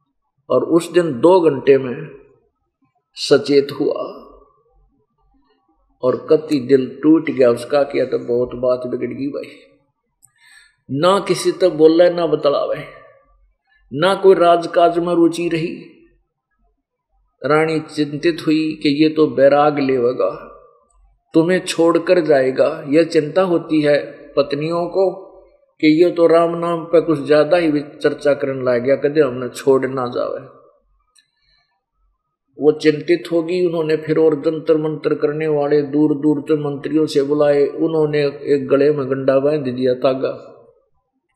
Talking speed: 140 wpm